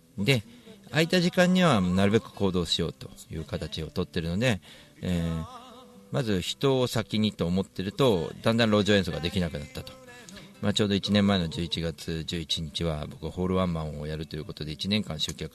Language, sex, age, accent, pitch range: Japanese, male, 40-59, native, 80-105 Hz